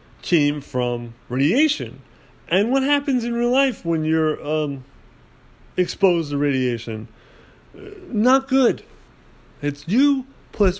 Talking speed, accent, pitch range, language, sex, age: 110 wpm, American, 125-165 Hz, English, male, 40-59